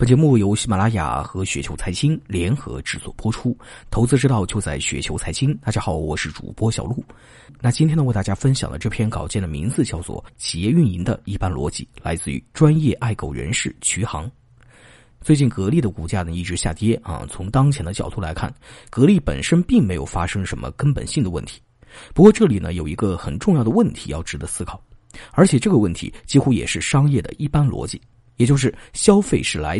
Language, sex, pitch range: Chinese, male, 95-140 Hz